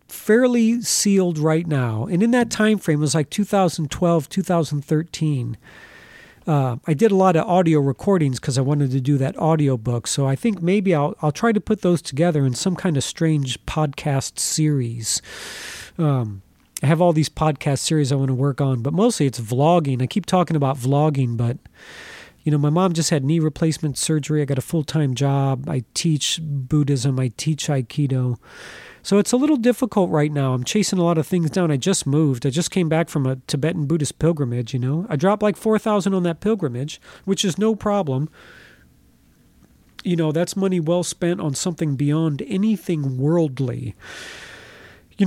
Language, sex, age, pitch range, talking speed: English, male, 40-59, 135-180 Hz, 185 wpm